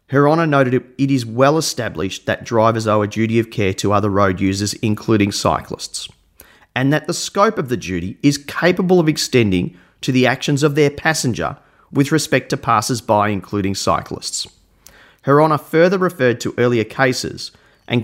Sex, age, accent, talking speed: male, 30-49, Australian, 175 wpm